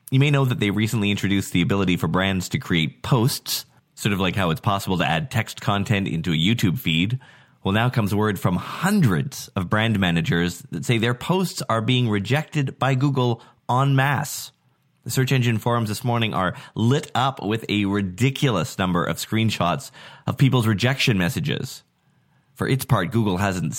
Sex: male